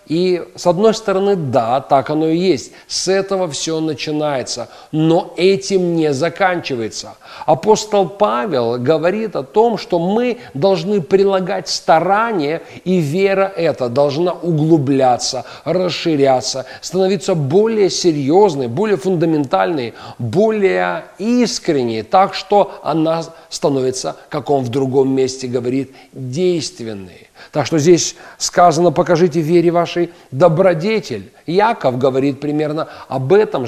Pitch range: 140-185 Hz